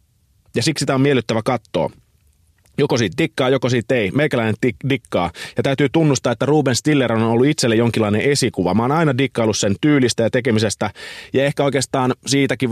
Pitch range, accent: 110-135 Hz, native